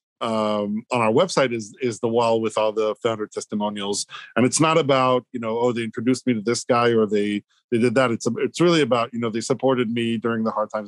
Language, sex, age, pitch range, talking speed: English, male, 40-59, 115-130 Hz, 250 wpm